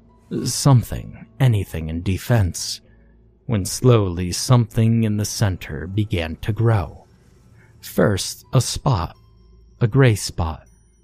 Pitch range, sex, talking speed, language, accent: 90-120 Hz, male, 105 wpm, English, American